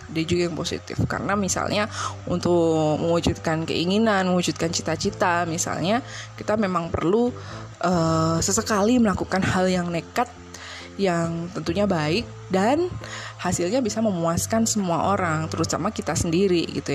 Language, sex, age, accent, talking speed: Indonesian, female, 20-39, native, 120 wpm